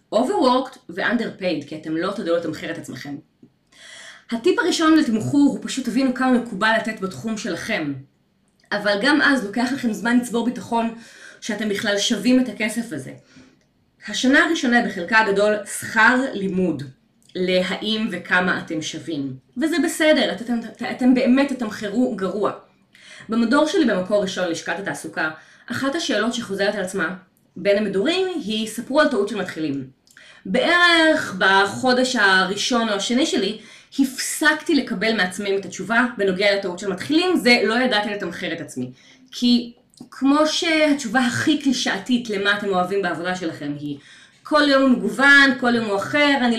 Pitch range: 190-260 Hz